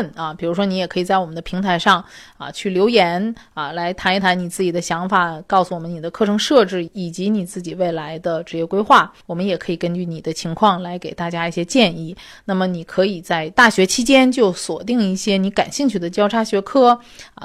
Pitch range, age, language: 180-230 Hz, 30-49, Chinese